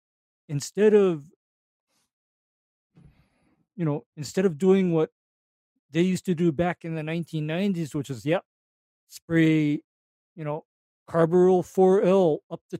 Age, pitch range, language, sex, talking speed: 50-69, 145-190 Hz, English, male, 125 wpm